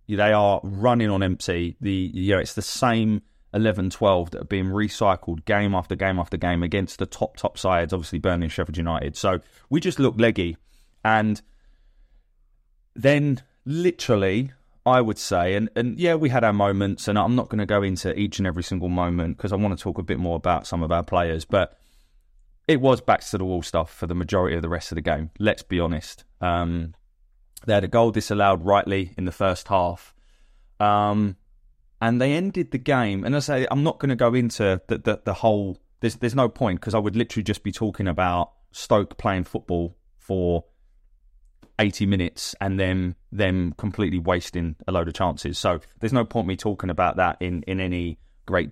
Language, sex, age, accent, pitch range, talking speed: English, male, 20-39, British, 85-110 Hz, 200 wpm